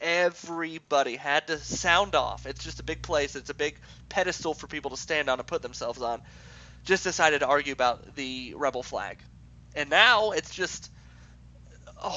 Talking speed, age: 180 wpm, 30-49